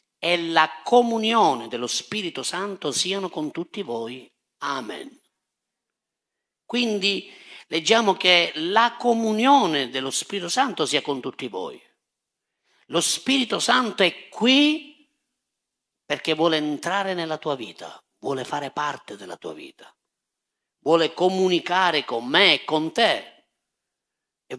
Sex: male